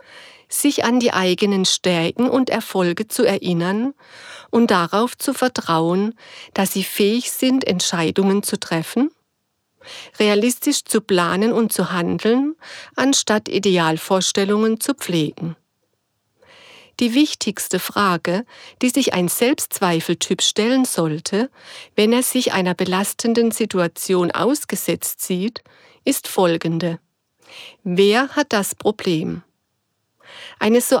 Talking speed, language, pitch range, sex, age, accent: 105 wpm, German, 180-255 Hz, female, 50-69, German